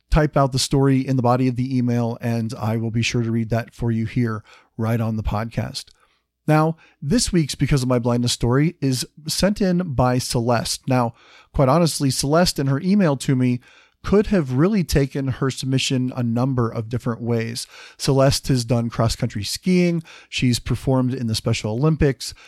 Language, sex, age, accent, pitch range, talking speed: English, male, 40-59, American, 125-165 Hz, 185 wpm